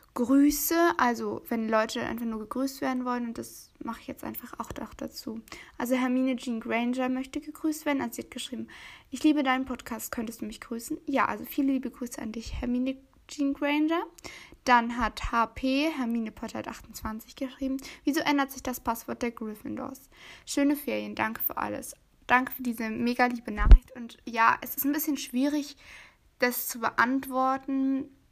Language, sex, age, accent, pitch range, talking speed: German, female, 20-39, German, 230-270 Hz, 170 wpm